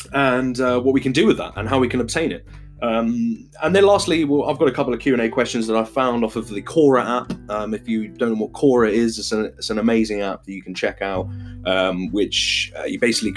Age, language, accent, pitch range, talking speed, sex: 20-39, English, British, 100-125 Hz, 260 wpm, male